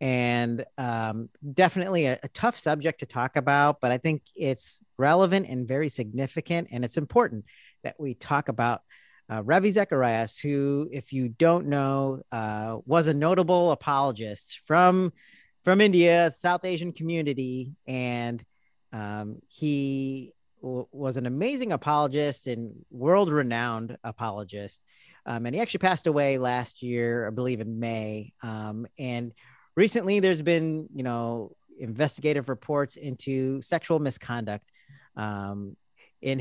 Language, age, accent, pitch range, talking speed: English, 40-59, American, 120-155 Hz, 135 wpm